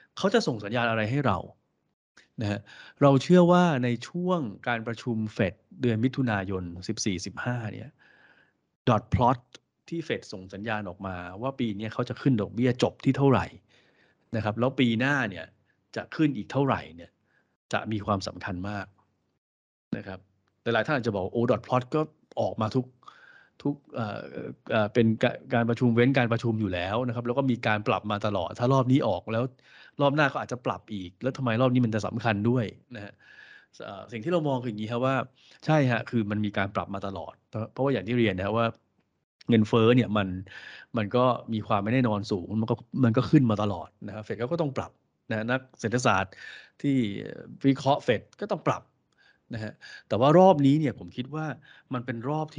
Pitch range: 105-130 Hz